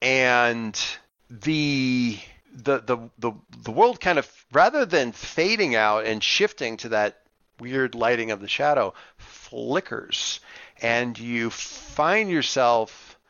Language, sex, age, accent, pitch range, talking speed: English, male, 40-59, American, 105-130 Hz, 120 wpm